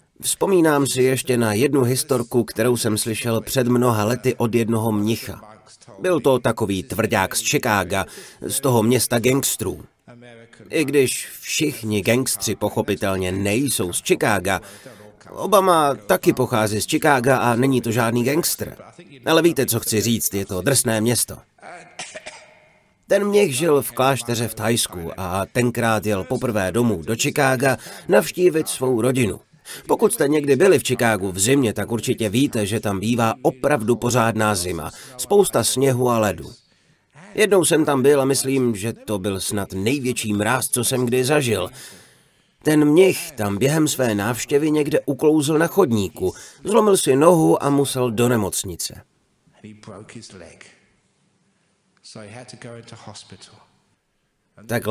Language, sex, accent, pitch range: Czech, male, native, 110-140 Hz